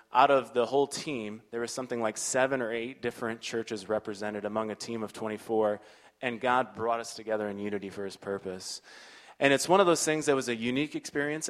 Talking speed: 215 wpm